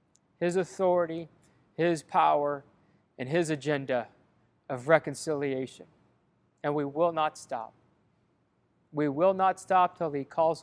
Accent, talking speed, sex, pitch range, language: American, 120 wpm, male, 150-180 Hz, English